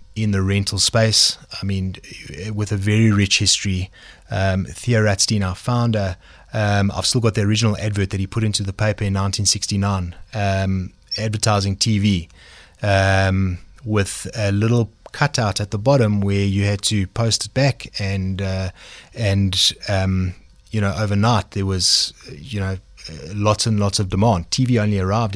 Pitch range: 95-110 Hz